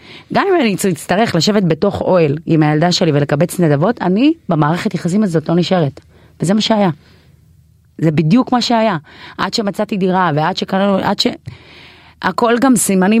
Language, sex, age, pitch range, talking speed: Hebrew, female, 30-49, 160-220 Hz, 155 wpm